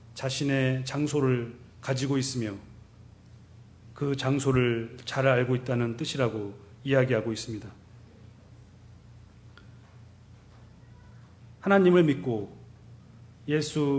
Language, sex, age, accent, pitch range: Korean, male, 40-59, native, 115-135 Hz